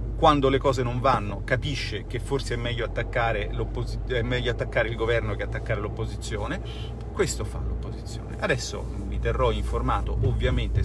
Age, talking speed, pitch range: 40-59, 150 wpm, 105-120 Hz